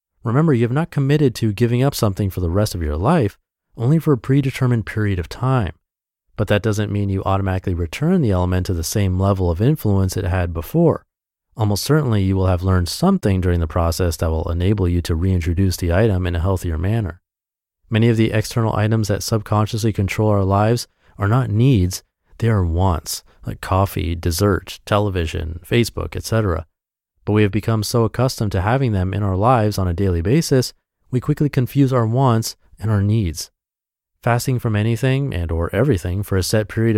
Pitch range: 90-120 Hz